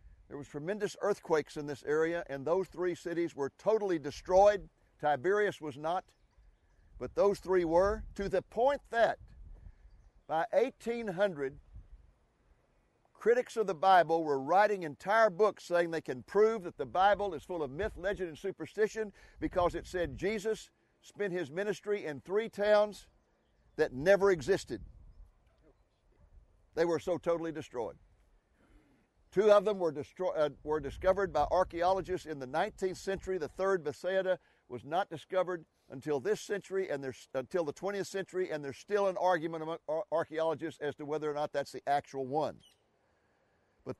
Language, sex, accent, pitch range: English, male, American, 150-195 Hz